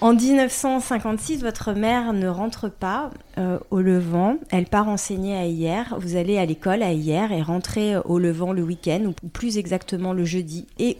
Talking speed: 190 wpm